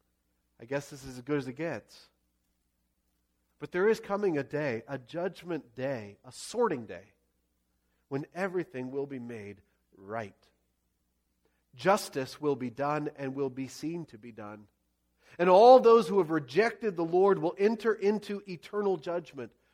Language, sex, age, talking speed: English, male, 40-59, 155 wpm